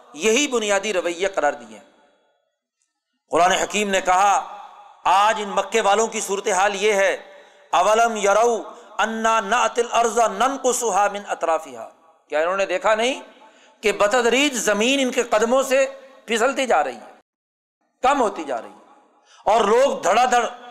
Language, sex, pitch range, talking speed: Urdu, male, 195-245 Hz, 115 wpm